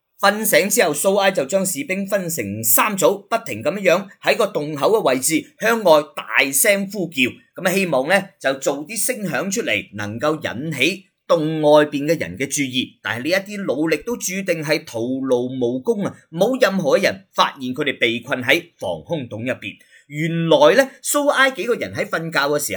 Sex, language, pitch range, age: male, Chinese, 145-215 Hz, 30-49